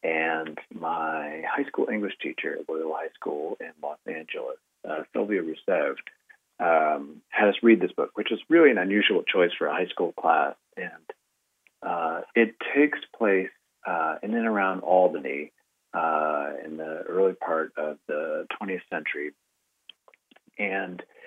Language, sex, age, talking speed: English, male, 40-59, 150 wpm